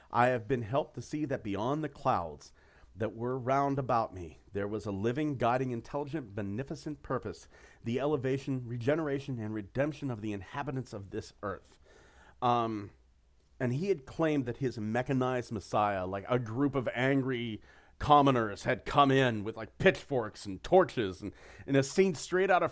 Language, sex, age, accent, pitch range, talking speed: English, male, 40-59, American, 110-145 Hz, 170 wpm